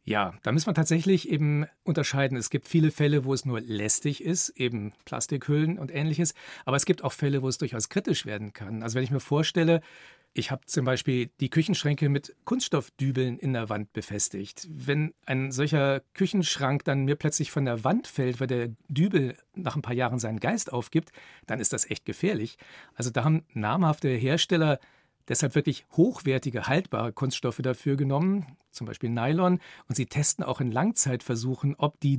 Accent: German